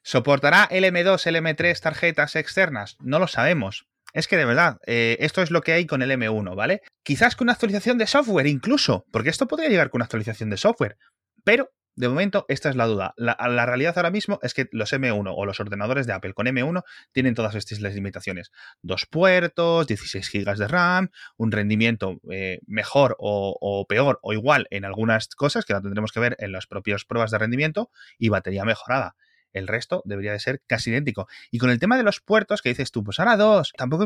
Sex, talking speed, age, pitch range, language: male, 210 wpm, 30-49, 110-180 Hz, Spanish